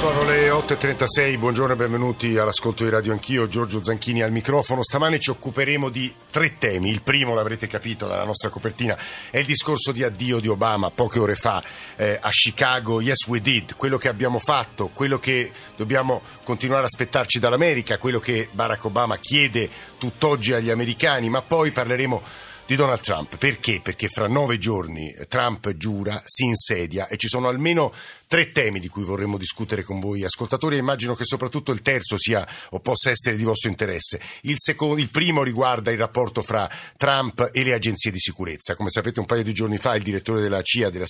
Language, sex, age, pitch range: Italian, male, 50-69, 110-130 Hz